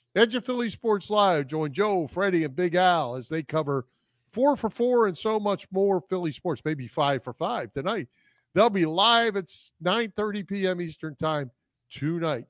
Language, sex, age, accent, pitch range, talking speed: English, male, 40-59, American, 130-180 Hz, 160 wpm